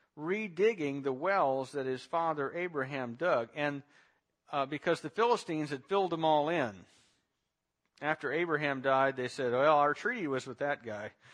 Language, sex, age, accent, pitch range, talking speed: English, male, 50-69, American, 135-185 Hz, 160 wpm